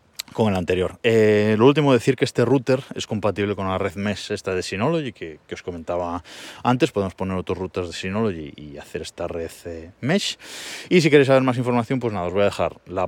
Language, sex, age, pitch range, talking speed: Spanish, male, 20-39, 95-125 Hz, 220 wpm